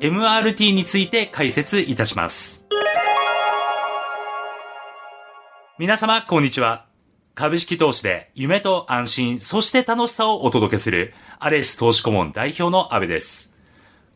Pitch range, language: 120-185 Hz, Japanese